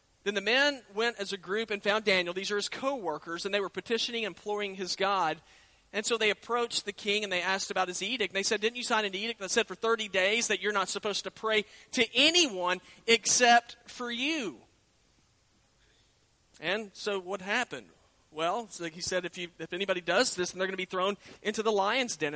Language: English